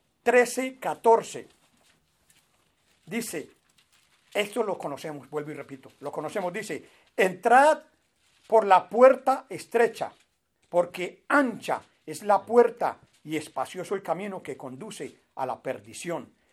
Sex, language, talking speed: male, English, 115 wpm